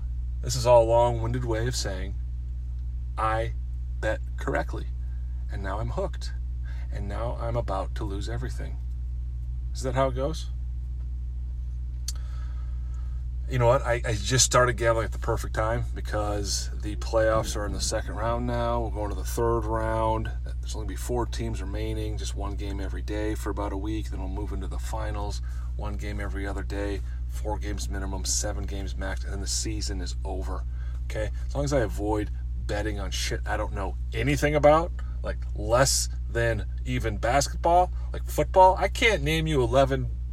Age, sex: 30-49, male